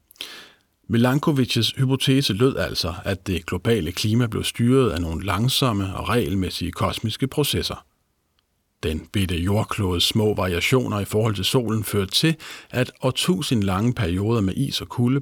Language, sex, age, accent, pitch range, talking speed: Danish, male, 50-69, native, 95-125 Hz, 140 wpm